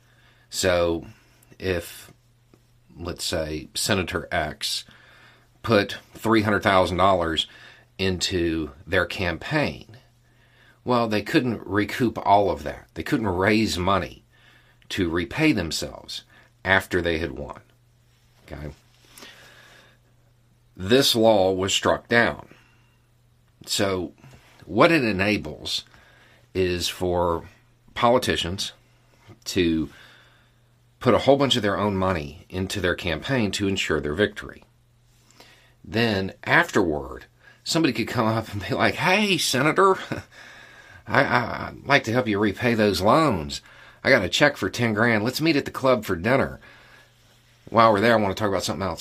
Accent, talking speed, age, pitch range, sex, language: American, 125 wpm, 50-69, 95-120 Hz, male, English